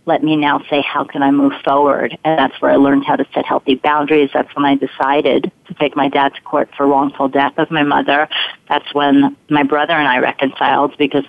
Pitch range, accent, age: 140-160 Hz, American, 40-59